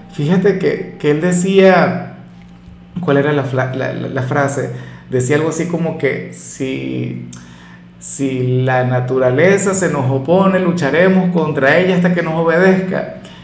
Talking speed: 145 wpm